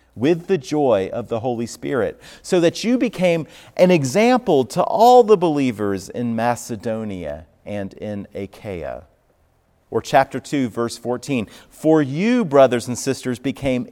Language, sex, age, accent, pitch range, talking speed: English, male, 40-59, American, 115-175 Hz, 140 wpm